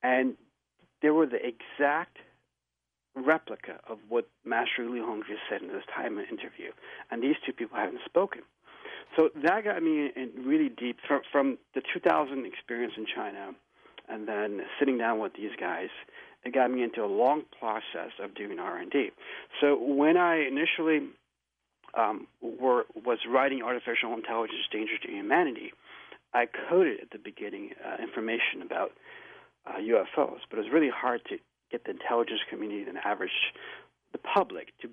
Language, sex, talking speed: English, male, 155 wpm